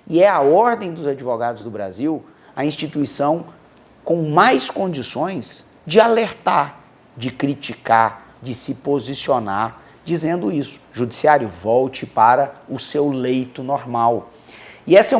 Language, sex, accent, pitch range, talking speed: Portuguese, male, Brazilian, 115-160 Hz, 125 wpm